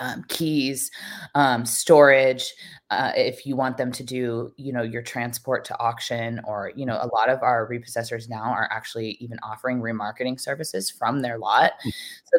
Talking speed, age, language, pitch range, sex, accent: 175 wpm, 20-39, English, 115-140 Hz, female, American